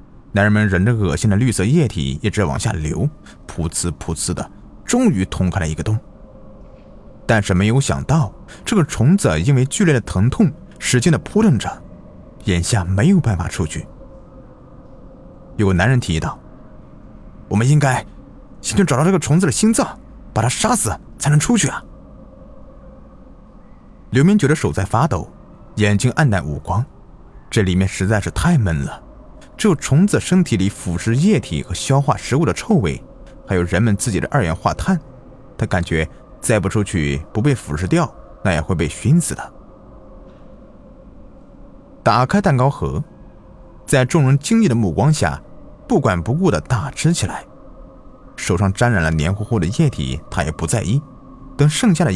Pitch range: 90-145 Hz